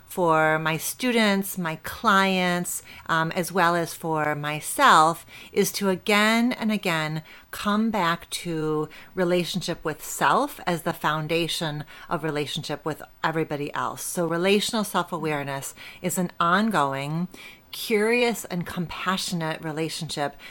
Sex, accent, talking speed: female, American, 115 wpm